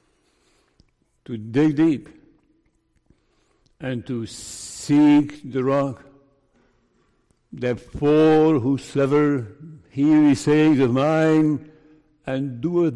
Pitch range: 130-155 Hz